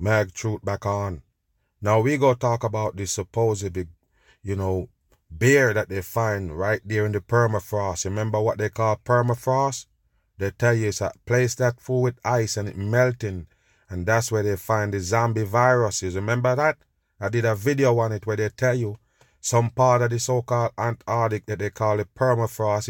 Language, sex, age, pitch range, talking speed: English, male, 30-49, 105-125 Hz, 190 wpm